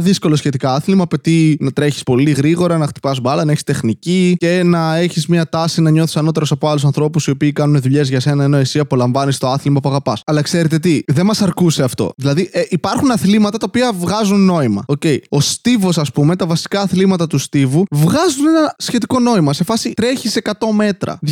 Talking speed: 205 wpm